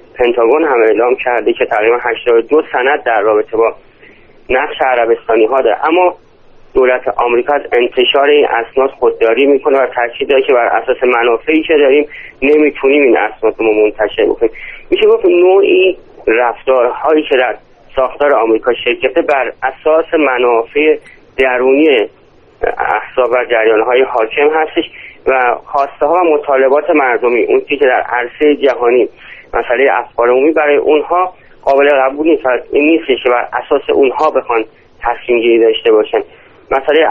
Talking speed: 135 wpm